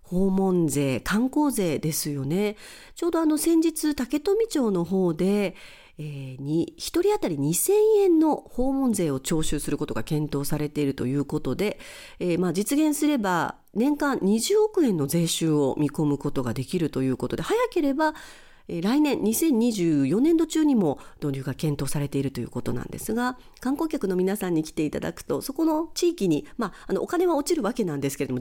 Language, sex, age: Japanese, female, 40-59